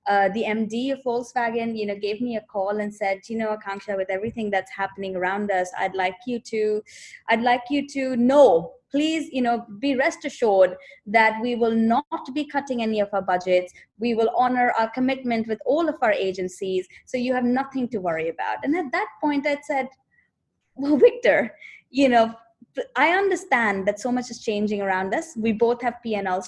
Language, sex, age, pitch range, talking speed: English, female, 20-39, 195-260 Hz, 195 wpm